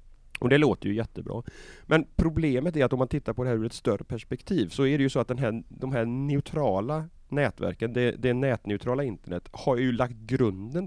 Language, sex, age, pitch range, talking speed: Swedish, male, 30-49, 100-135 Hz, 215 wpm